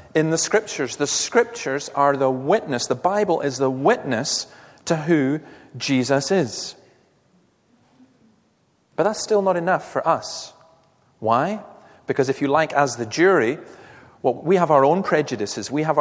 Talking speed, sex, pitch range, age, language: 150 wpm, male, 135-180 Hz, 40-59, English